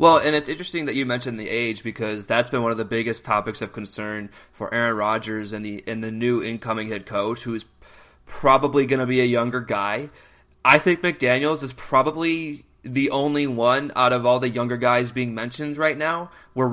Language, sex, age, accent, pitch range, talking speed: English, male, 20-39, American, 115-140 Hz, 210 wpm